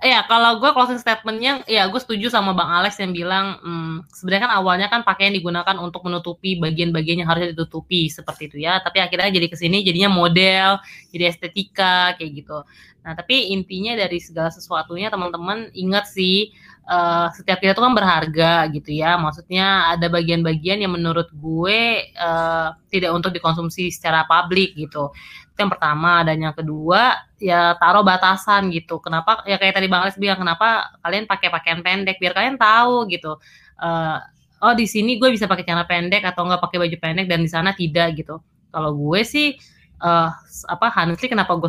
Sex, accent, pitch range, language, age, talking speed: female, native, 170-205 Hz, Indonesian, 20-39, 175 wpm